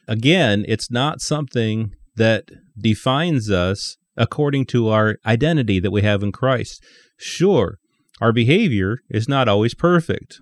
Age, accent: 30-49, American